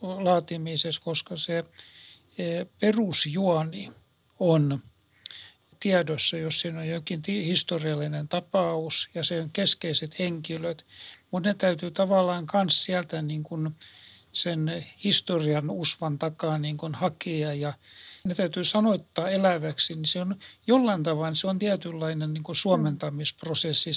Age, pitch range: 60-79, 150-175 Hz